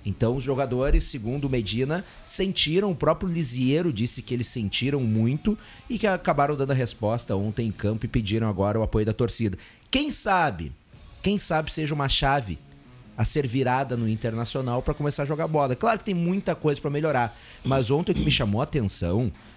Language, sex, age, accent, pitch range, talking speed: Portuguese, male, 30-49, Brazilian, 120-170 Hz, 190 wpm